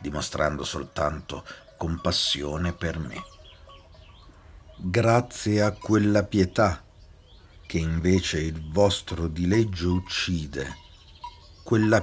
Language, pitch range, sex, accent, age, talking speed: Italian, 85-115 Hz, male, native, 50-69, 80 wpm